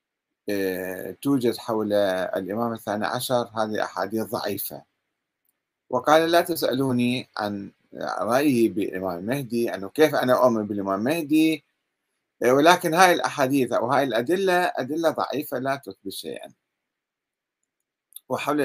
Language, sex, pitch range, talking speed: Arabic, male, 110-145 Hz, 105 wpm